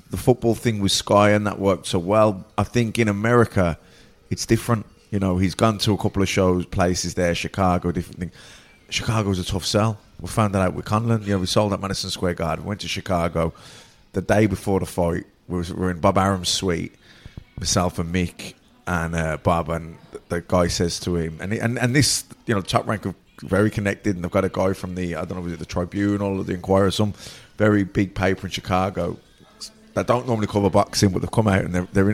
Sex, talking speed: male, 230 wpm